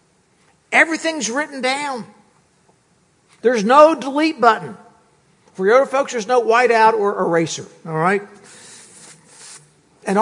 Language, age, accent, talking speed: English, 60-79, American, 105 wpm